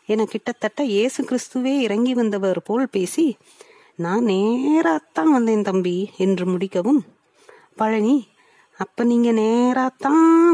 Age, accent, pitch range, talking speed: 30-49, native, 195-270 Hz, 100 wpm